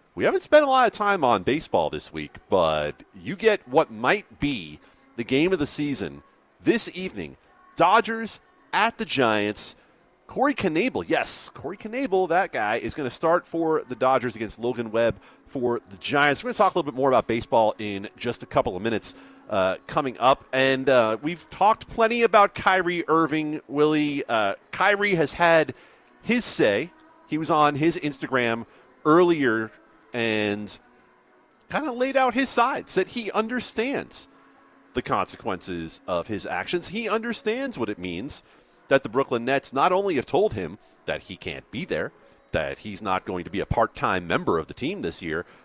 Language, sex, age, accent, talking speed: English, male, 40-59, American, 180 wpm